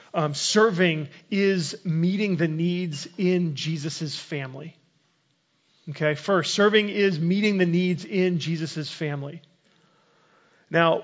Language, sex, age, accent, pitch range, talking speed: English, male, 30-49, American, 160-195 Hz, 110 wpm